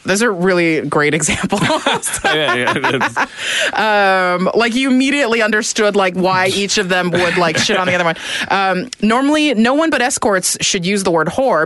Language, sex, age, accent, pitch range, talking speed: English, female, 30-49, American, 160-200 Hz, 170 wpm